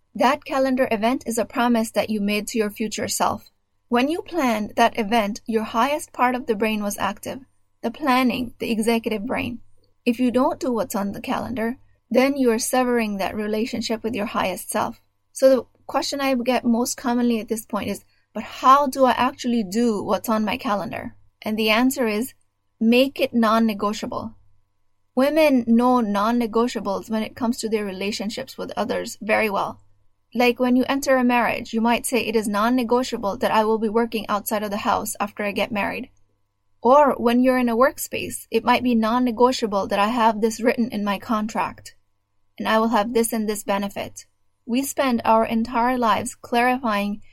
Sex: female